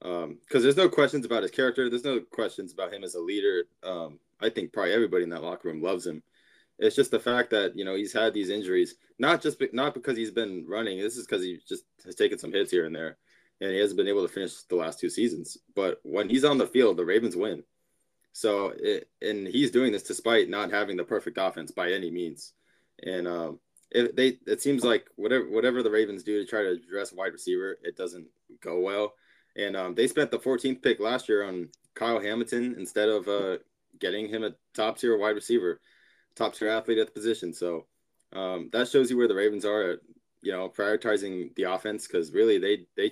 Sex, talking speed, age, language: male, 225 wpm, 20-39, English